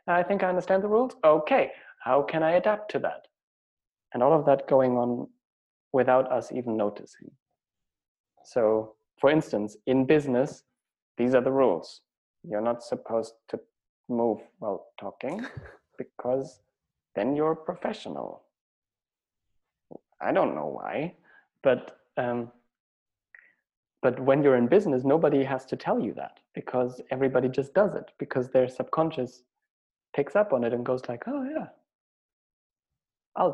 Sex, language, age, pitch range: male, English, 30-49, 125-155 Hz